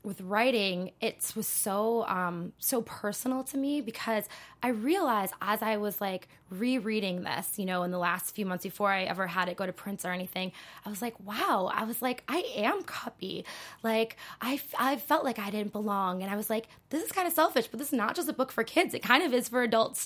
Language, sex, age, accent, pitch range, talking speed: English, female, 20-39, American, 190-230 Hz, 235 wpm